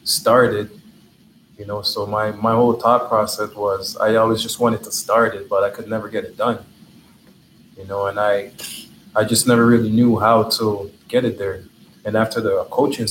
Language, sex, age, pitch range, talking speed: English, male, 20-39, 105-120 Hz, 190 wpm